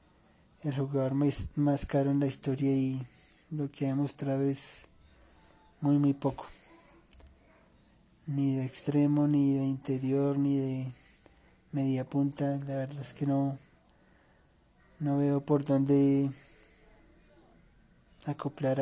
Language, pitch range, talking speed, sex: Spanish, 130-140 Hz, 115 wpm, male